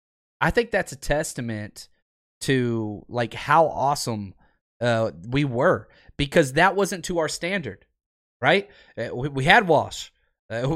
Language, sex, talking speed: English, male, 135 wpm